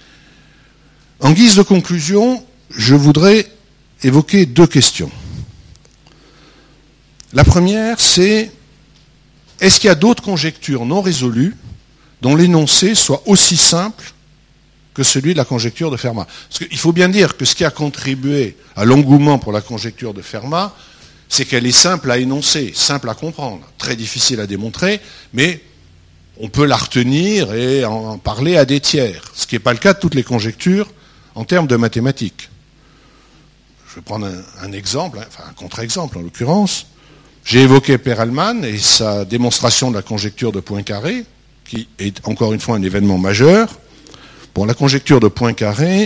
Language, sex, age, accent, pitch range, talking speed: French, male, 60-79, French, 115-155 Hz, 160 wpm